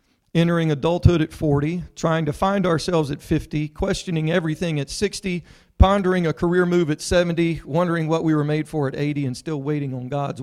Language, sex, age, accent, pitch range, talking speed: English, male, 40-59, American, 130-170 Hz, 190 wpm